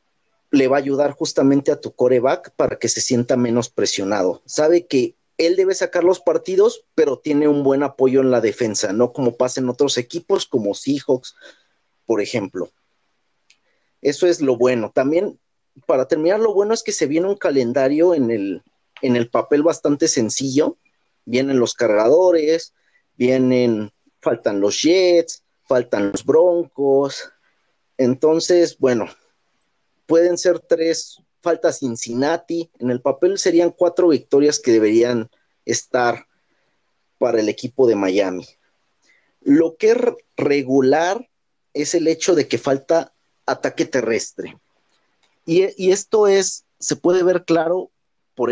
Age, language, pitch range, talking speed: 40-59, Spanish, 130-175 Hz, 140 wpm